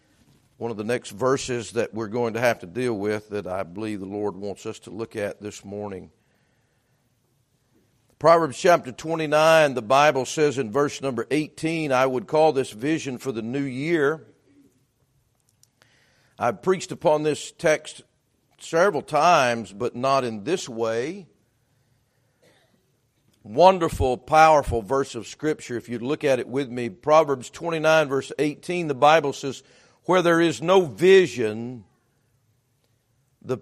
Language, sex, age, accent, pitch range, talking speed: English, male, 50-69, American, 120-155 Hz, 145 wpm